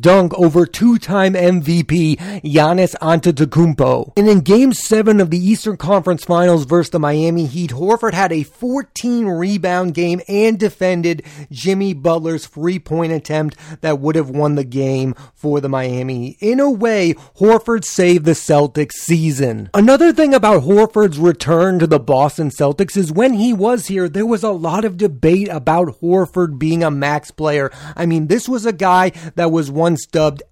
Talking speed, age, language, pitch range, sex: 165 wpm, 30-49, English, 145-190 Hz, male